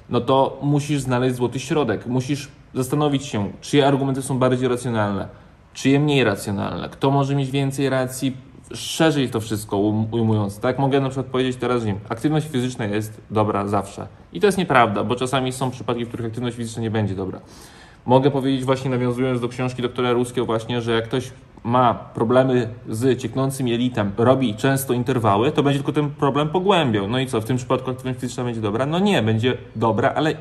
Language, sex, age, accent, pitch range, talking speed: Polish, male, 20-39, native, 110-135 Hz, 185 wpm